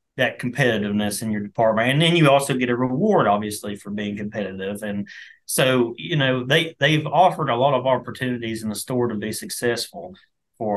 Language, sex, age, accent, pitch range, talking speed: English, male, 30-49, American, 105-130 Hz, 190 wpm